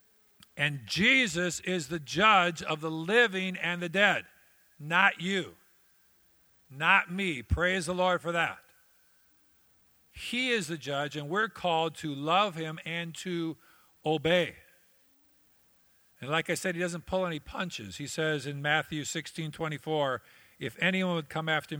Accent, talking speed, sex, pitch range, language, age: American, 150 wpm, male, 140-180 Hz, English, 50-69